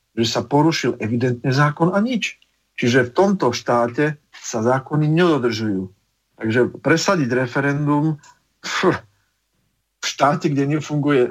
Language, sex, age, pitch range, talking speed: Slovak, male, 50-69, 115-145 Hz, 110 wpm